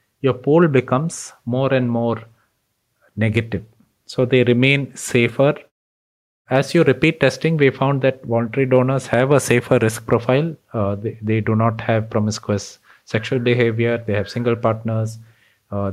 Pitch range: 110-130 Hz